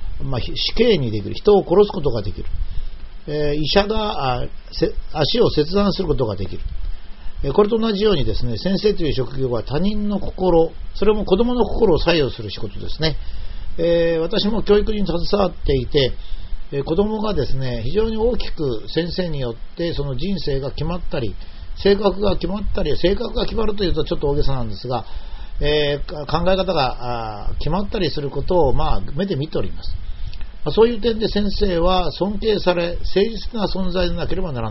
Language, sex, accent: Japanese, male, native